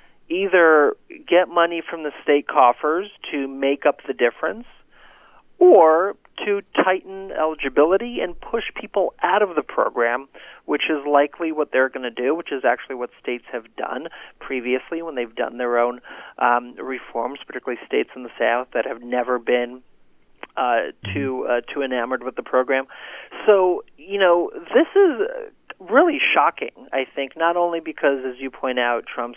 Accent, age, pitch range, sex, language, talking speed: American, 40-59, 130-180 Hz, male, English, 165 wpm